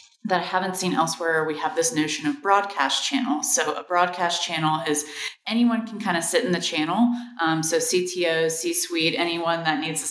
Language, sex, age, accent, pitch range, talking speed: English, female, 30-49, American, 155-190 Hz, 200 wpm